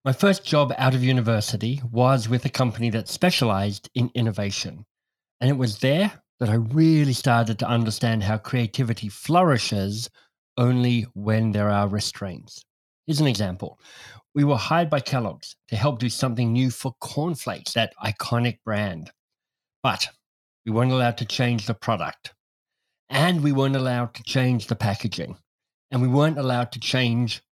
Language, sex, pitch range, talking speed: English, male, 110-130 Hz, 155 wpm